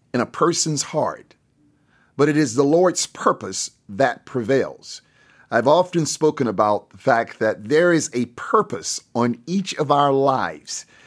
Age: 50-69